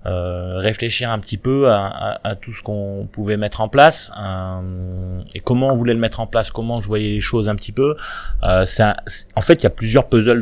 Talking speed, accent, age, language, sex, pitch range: 240 wpm, French, 20-39, French, male, 95-115 Hz